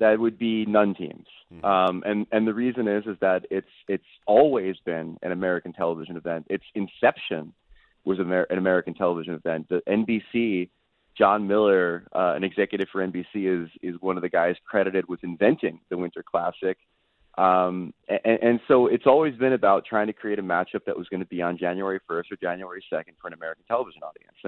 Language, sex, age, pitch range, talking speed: English, male, 20-39, 85-110 Hz, 195 wpm